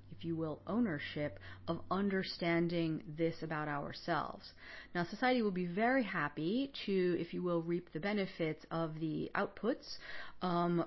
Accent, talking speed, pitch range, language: American, 145 wpm, 160-180 Hz, English